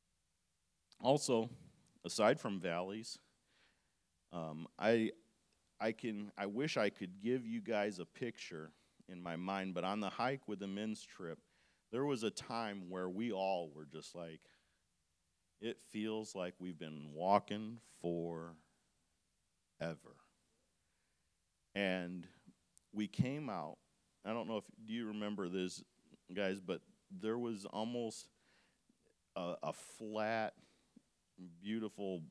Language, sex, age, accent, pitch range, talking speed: English, male, 40-59, American, 85-115 Hz, 125 wpm